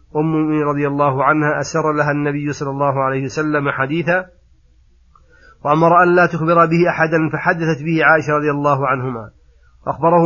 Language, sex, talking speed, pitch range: Arabic, male, 150 wpm, 140-160 Hz